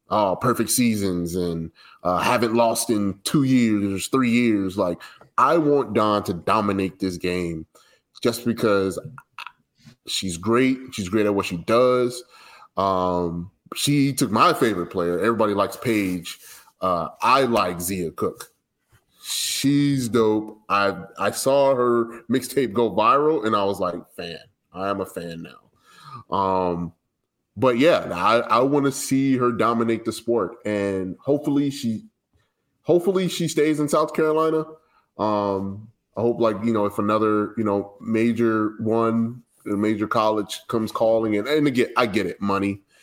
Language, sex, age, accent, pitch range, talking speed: English, male, 30-49, American, 95-125 Hz, 150 wpm